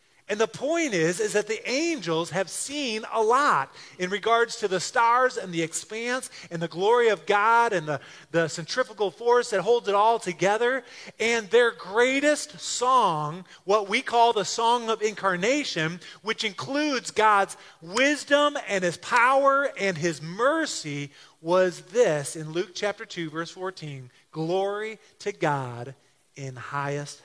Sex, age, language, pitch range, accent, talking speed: male, 30-49, English, 165-245 Hz, American, 150 wpm